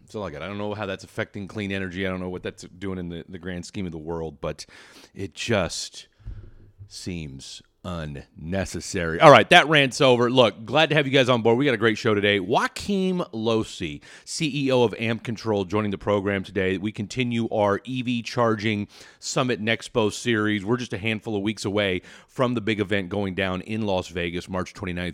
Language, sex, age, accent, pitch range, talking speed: English, male, 30-49, American, 90-115 Hz, 195 wpm